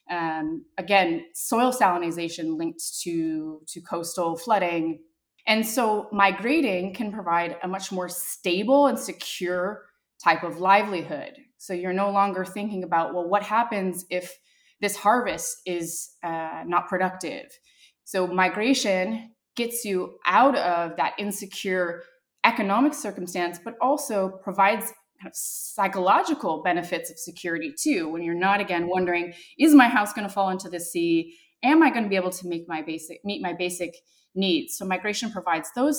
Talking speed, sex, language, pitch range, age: 150 wpm, female, English, 175-235 Hz, 20-39